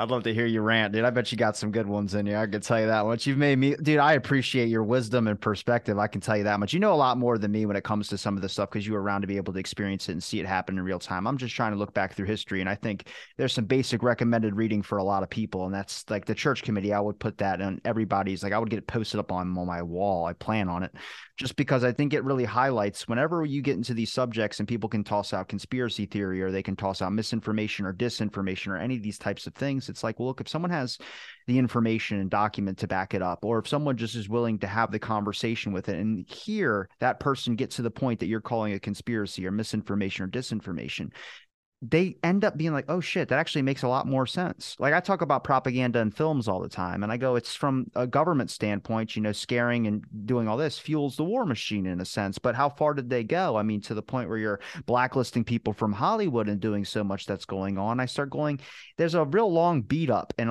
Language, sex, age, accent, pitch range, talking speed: English, male, 30-49, American, 100-130 Hz, 275 wpm